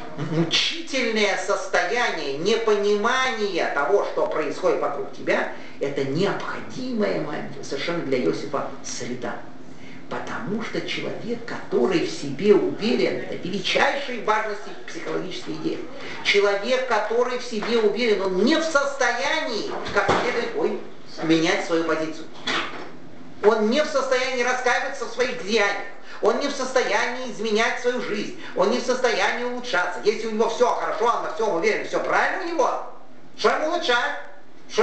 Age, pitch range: 40-59, 200-260 Hz